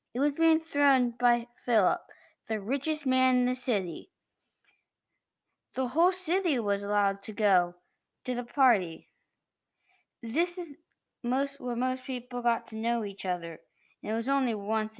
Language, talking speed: English, 150 wpm